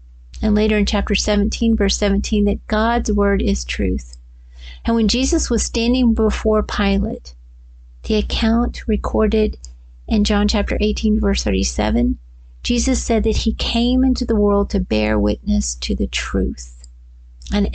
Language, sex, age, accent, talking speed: English, female, 50-69, American, 145 wpm